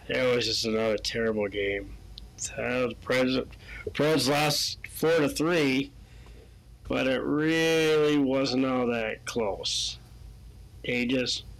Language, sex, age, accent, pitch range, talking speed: English, male, 40-59, American, 90-135 Hz, 110 wpm